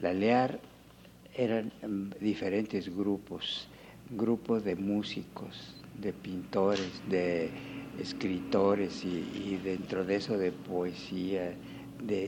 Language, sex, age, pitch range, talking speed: Spanish, male, 60-79, 90-110 Hz, 100 wpm